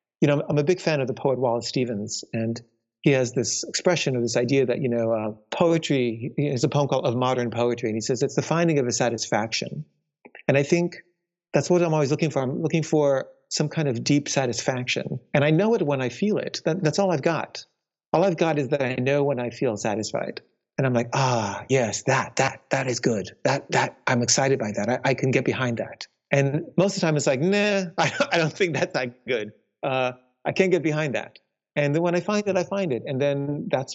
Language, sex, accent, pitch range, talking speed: English, male, American, 125-160 Hz, 235 wpm